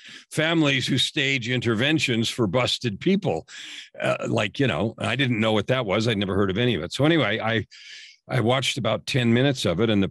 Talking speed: 215 wpm